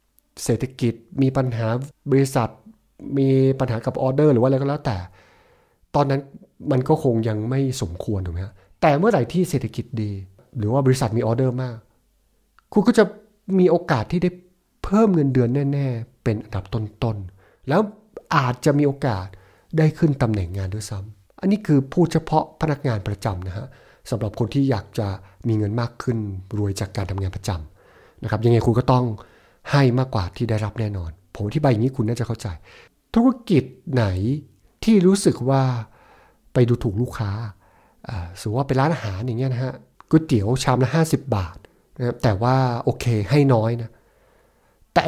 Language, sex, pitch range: Thai, male, 110-140 Hz